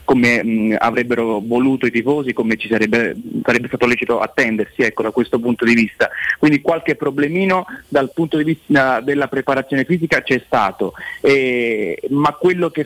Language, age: Italian, 30-49